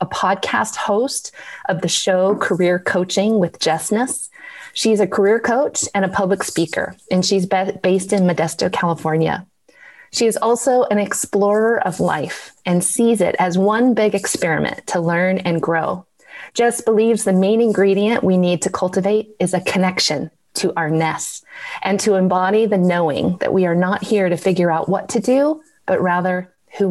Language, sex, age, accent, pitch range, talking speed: English, female, 30-49, American, 185-215 Hz, 170 wpm